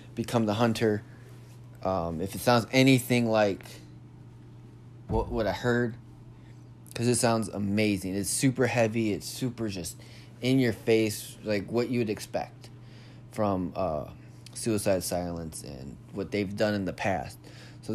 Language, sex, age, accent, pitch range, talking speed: English, male, 20-39, American, 105-120 Hz, 145 wpm